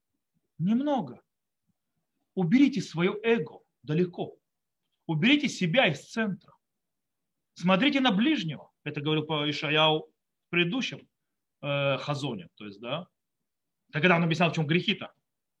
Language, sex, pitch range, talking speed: Russian, male, 155-195 Hz, 110 wpm